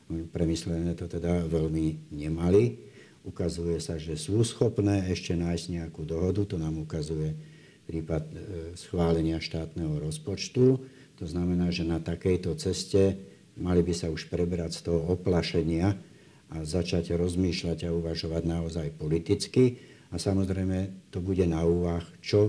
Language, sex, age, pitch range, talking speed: Slovak, male, 60-79, 80-95 Hz, 130 wpm